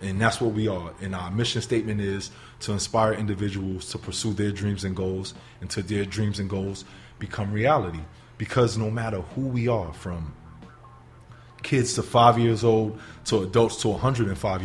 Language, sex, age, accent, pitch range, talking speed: English, male, 20-39, American, 105-130 Hz, 175 wpm